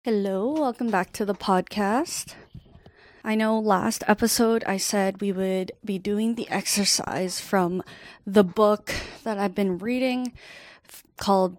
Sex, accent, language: female, American, English